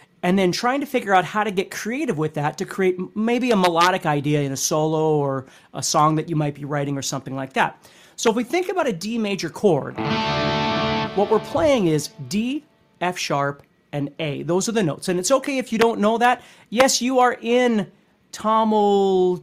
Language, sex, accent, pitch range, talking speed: English, male, American, 155-235 Hz, 210 wpm